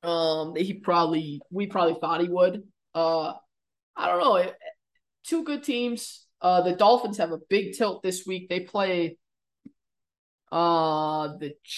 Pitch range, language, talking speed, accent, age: 175-240 Hz, English, 145 wpm, American, 20-39